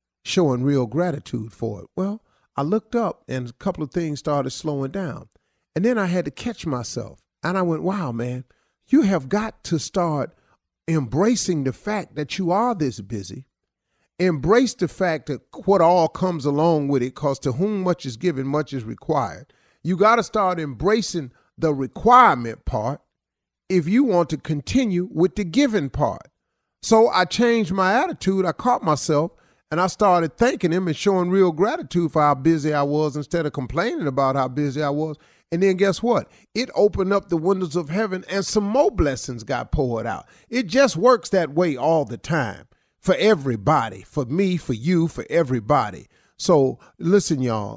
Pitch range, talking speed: 135-190 Hz, 180 wpm